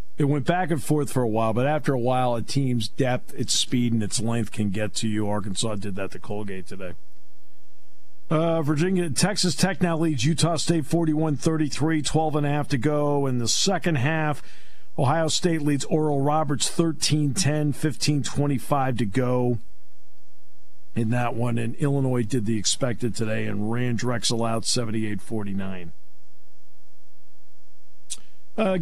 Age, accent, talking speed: 50-69, American, 150 wpm